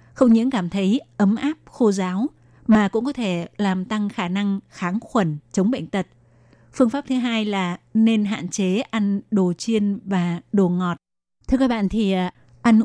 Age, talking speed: 20-39, 185 wpm